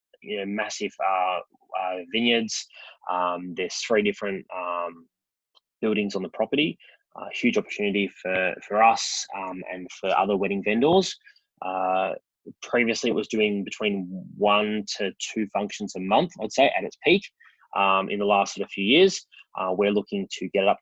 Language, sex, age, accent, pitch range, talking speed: English, male, 20-39, Australian, 95-110 Hz, 160 wpm